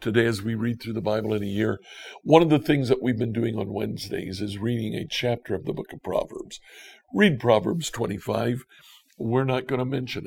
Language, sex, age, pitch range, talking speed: English, male, 60-79, 110-140 Hz, 215 wpm